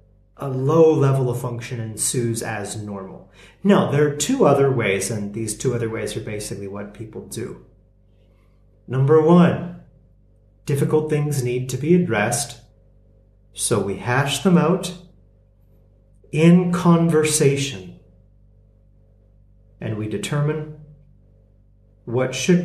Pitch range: 105-140 Hz